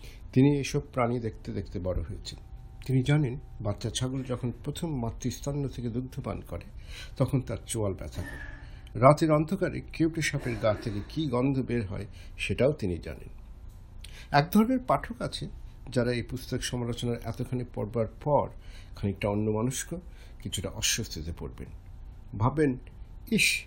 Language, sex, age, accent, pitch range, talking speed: Bengali, male, 60-79, native, 100-135 Hz, 130 wpm